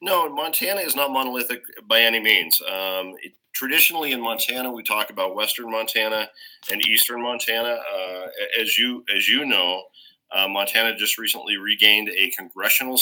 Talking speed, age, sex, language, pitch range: 155 wpm, 40-59, male, English, 100-125 Hz